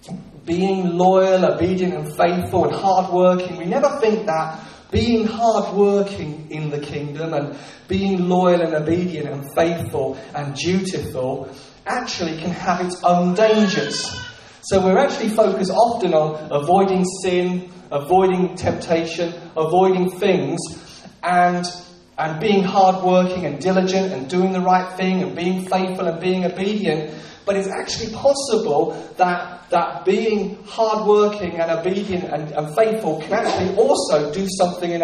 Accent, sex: British, male